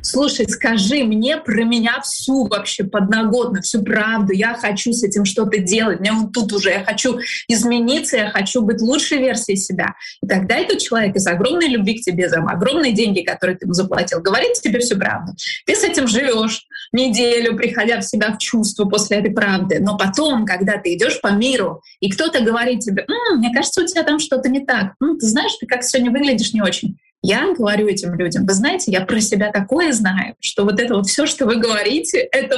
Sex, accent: female, native